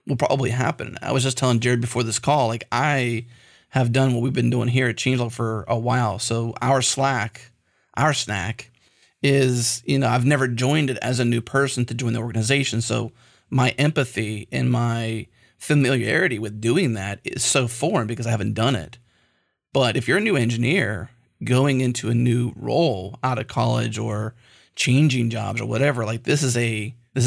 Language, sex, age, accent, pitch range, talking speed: English, male, 30-49, American, 115-130 Hz, 190 wpm